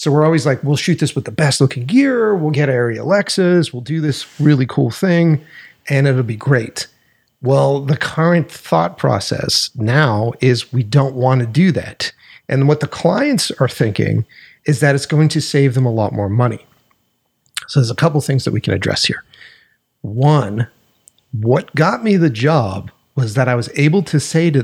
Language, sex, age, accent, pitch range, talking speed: English, male, 40-59, American, 120-150 Hz, 195 wpm